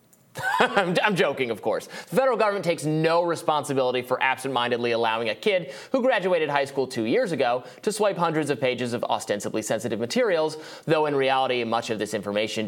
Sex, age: male, 30-49